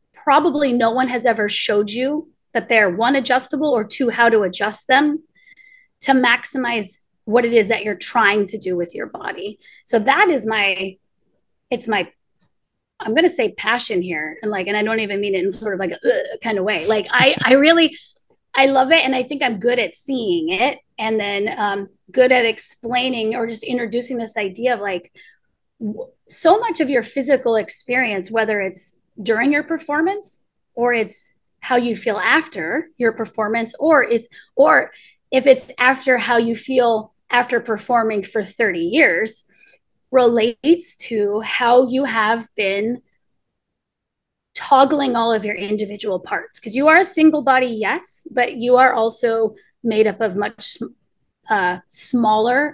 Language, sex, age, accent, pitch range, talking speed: English, female, 30-49, American, 215-270 Hz, 170 wpm